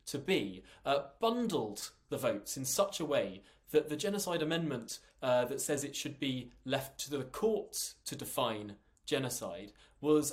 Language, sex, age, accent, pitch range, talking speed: English, male, 20-39, British, 130-180 Hz, 165 wpm